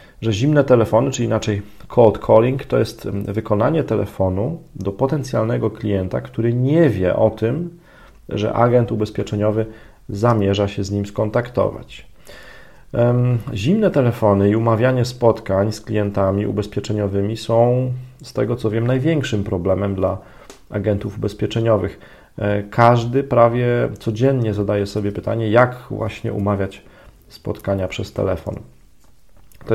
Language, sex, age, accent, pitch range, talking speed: Polish, male, 40-59, native, 100-115 Hz, 115 wpm